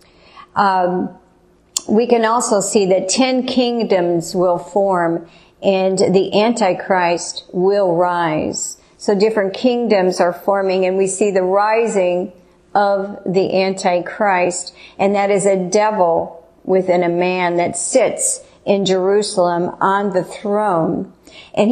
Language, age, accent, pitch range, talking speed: English, 50-69, American, 175-205 Hz, 120 wpm